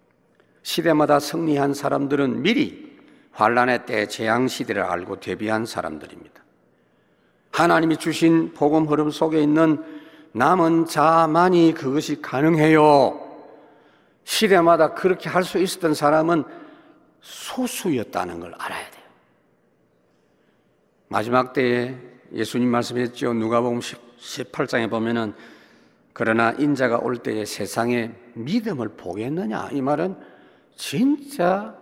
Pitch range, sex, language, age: 115-165 Hz, male, Korean, 50-69